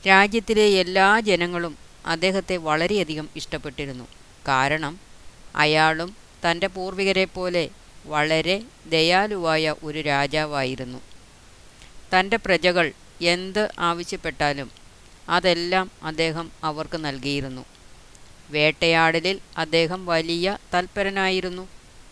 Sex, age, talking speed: female, 30-49, 70 wpm